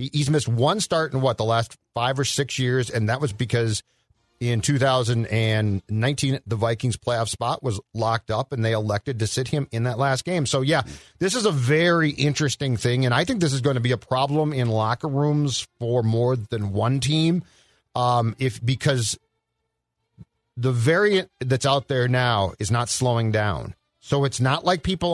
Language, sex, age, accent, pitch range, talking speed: English, male, 40-59, American, 115-145 Hz, 190 wpm